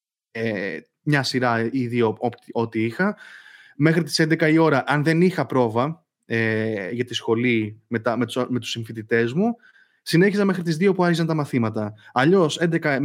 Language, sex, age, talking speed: Greek, male, 20-39, 160 wpm